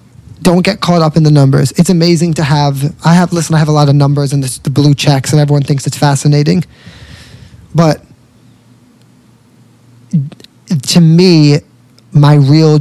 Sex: male